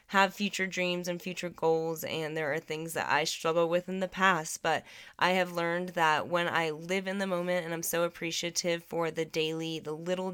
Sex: female